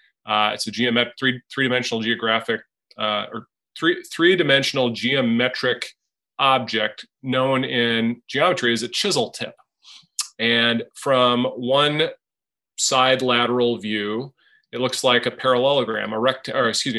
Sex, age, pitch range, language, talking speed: male, 30-49, 115-130 Hz, English, 130 wpm